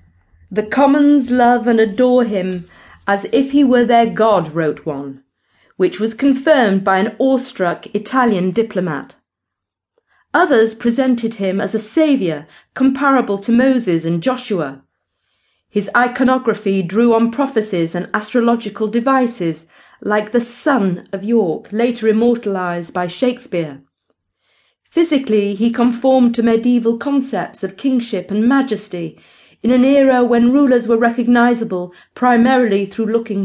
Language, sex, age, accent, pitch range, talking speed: English, female, 40-59, British, 185-250 Hz, 125 wpm